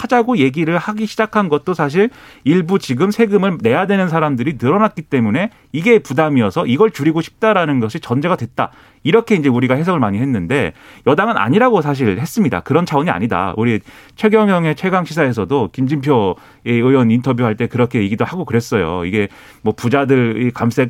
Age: 30-49